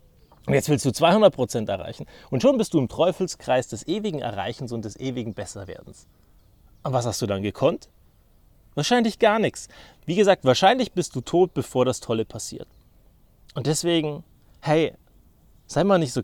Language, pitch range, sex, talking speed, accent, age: German, 110-155 Hz, male, 165 wpm, German, 30-49